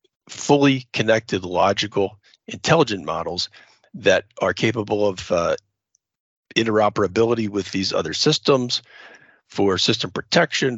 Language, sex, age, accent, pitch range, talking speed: English, male, 40-59, American, 100-120 Hz, 100 wpm